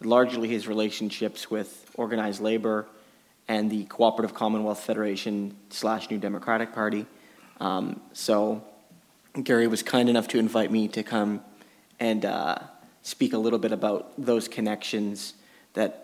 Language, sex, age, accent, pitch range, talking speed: English, male, 30-49, American, 110-120 Hz, 135 wpm